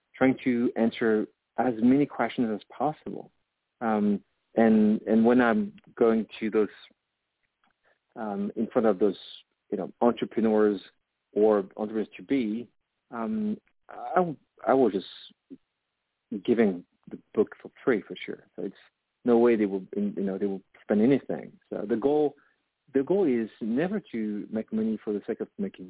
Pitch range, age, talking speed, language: 105-125 Hz, 50-69, 160 wpm, English